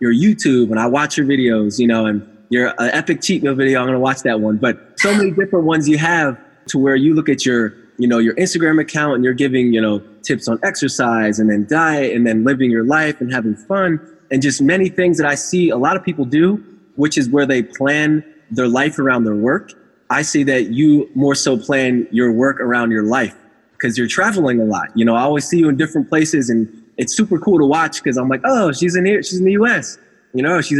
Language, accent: English, American